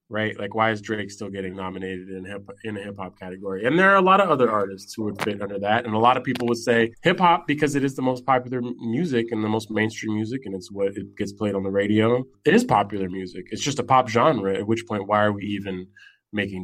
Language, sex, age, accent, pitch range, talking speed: English, male, 20-39, American, 100-130 Hz, 265 wpm